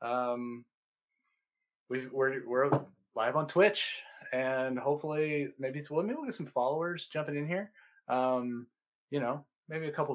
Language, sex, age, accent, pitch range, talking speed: English, male, 20-39, American, 120-150 Hz, 155 wpm